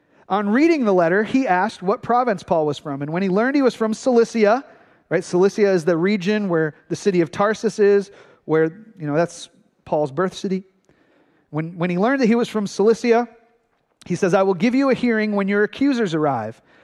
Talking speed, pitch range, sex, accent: 205 wpm, 185-245 Hz, male, American